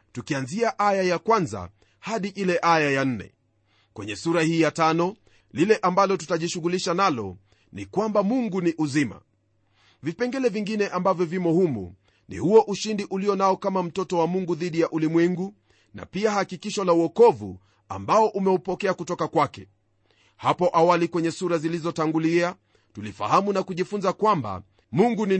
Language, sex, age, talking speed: Swahili, male, 40-59, 140 wpm